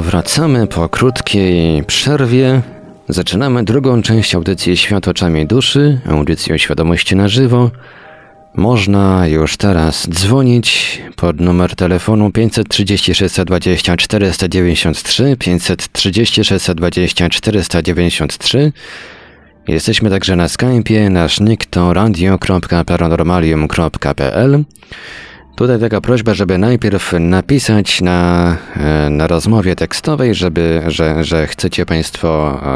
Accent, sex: native, male